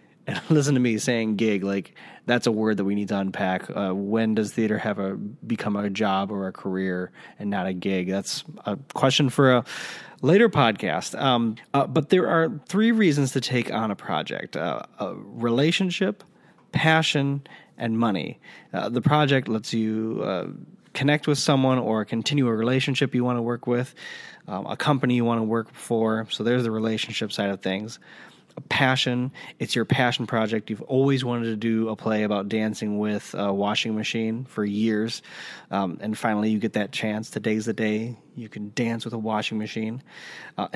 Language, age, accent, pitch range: English, 30-49, American, 110-135 Hz